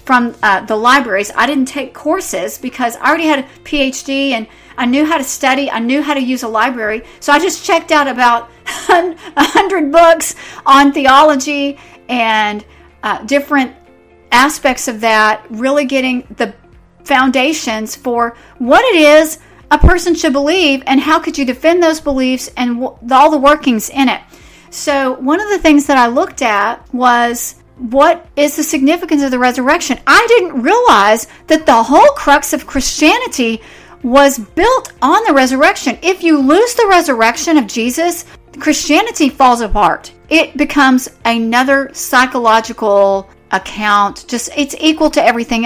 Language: English